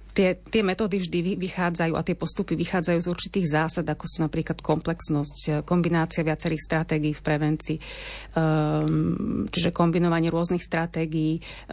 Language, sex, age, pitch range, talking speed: Slovak, female, 30-49, 155-175 Hz, 130 wpm